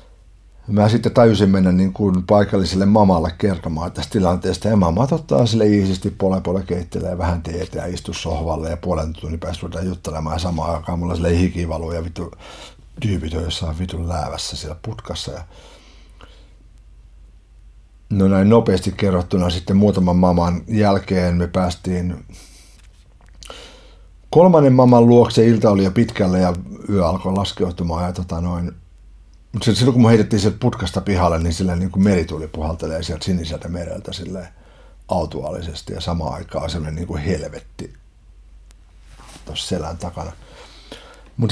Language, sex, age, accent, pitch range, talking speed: Finnish, male, 60-79, native, 85-105 Hz, 135 wpm